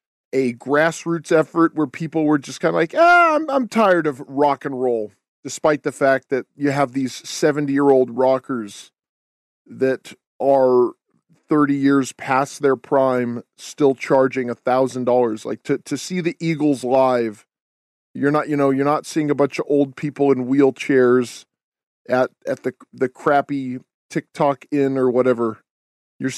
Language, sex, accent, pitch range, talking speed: English, male, American, 125-155 Hz, 165 wpm